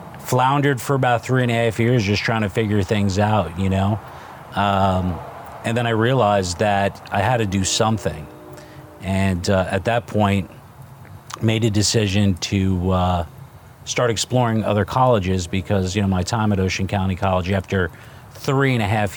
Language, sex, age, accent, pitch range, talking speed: English, male, 40-59, American, 100-120 Hz, 170 wpm